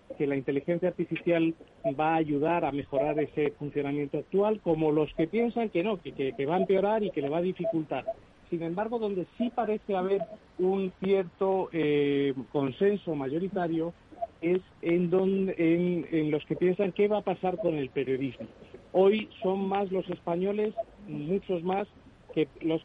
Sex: male